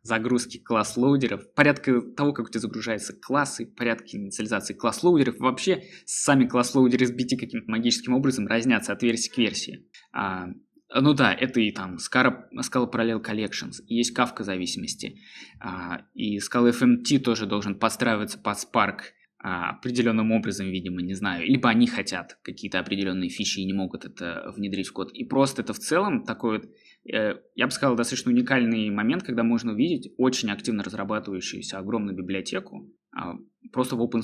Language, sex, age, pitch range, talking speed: Russian, male, 20-39, 100-130 Hz, 160 wpm